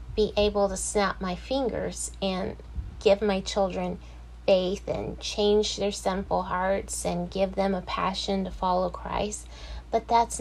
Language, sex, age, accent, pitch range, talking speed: English, female, 30-49, American, 180-210 Hz, 150 wpm